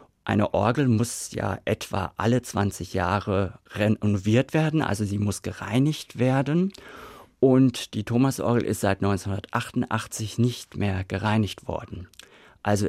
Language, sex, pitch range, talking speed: German, male, 100-125 Hz, 120 wpm